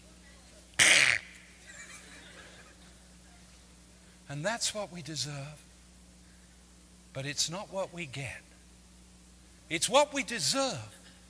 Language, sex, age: English, male, 50-69